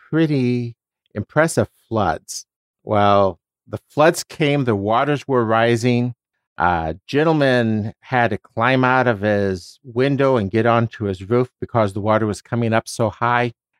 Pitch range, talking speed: 100-130 Hz, 150 wpm